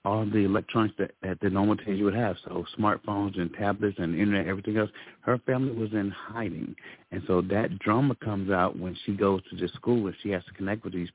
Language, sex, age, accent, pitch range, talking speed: English, male, 50-69, American, 90-105 Hz, 230 wpm